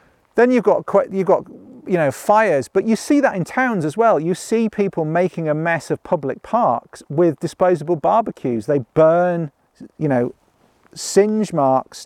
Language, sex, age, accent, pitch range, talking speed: English, male, 40-59, British, 145-200 Hz, 175 wpm